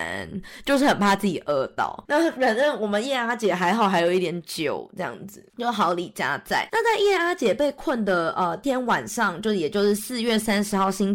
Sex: female